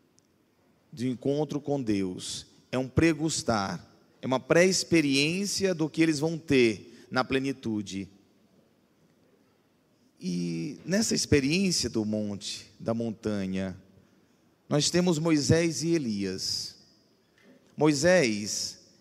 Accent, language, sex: Brazilian, Portuguese, male